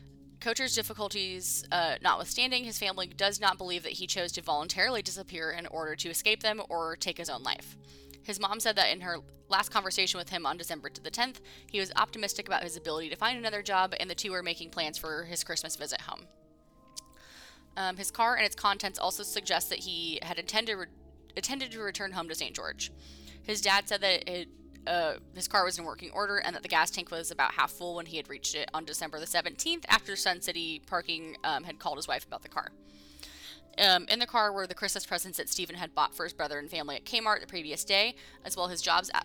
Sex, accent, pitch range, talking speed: female, American, 160-200 Hz, 225 wpm